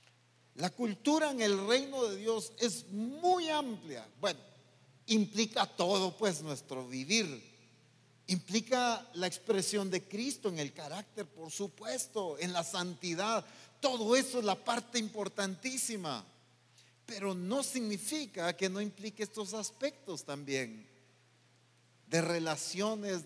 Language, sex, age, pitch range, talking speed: English, male, 40-59, 160-225 Hz, 120 wpm